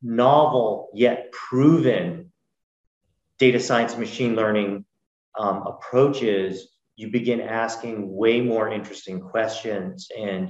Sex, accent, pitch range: male, American, 105-130 Hz